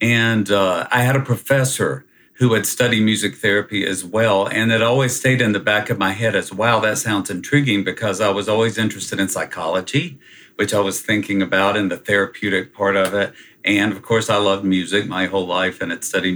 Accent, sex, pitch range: American, male, 100-120 Hz